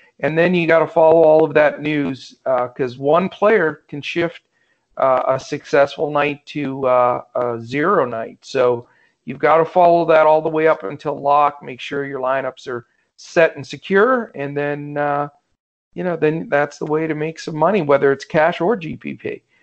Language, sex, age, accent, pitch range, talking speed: English, male, 50-69, American, 140-180 Hz, 195 wpm